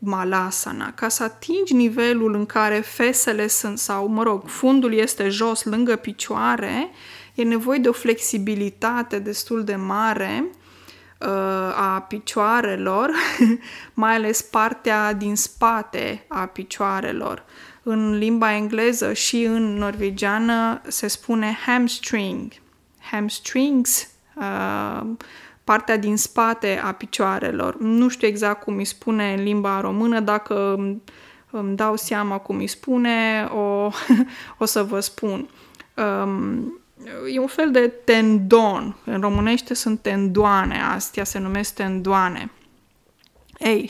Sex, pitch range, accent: female, 205-240 Hz, native